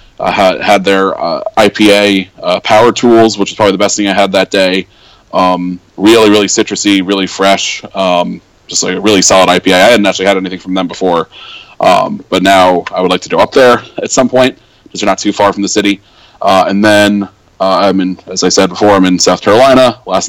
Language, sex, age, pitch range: English, male, 20-39, 95-110 Hz